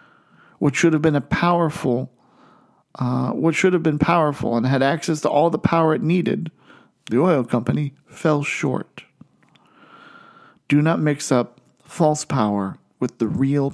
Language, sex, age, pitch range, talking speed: English, male, 40-59, 120-155 Hz, 155 wpm